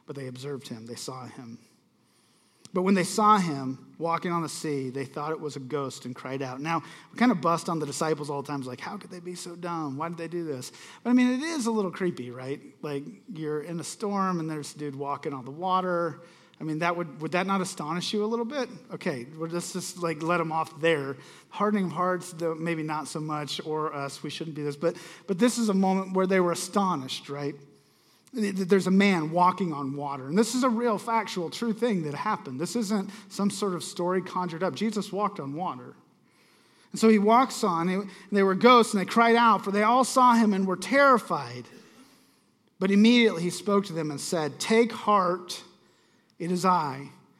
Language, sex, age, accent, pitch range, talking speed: English, male, 40-59, American, 150-200 Hz, 225 wpm